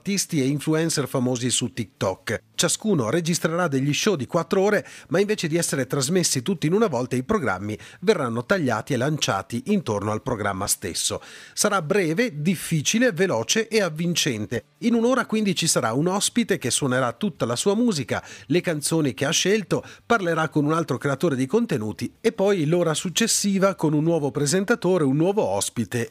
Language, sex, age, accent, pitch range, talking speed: Italian, male, 40-59, native, 130-190 Hz, 170 wpm